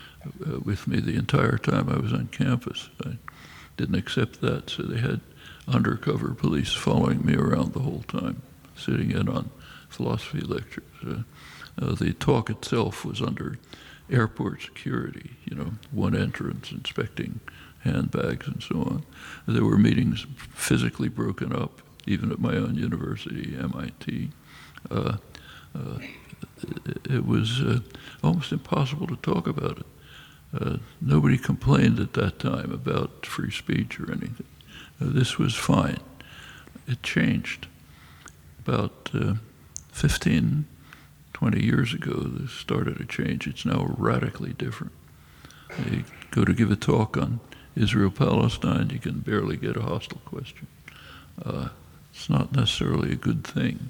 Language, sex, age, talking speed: English, male, 60-79, 140 wpm